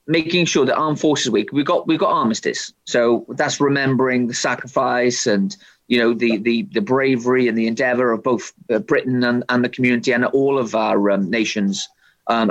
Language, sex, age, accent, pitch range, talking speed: English, male, 30-49, British, 110-140 Hz, 190 wpm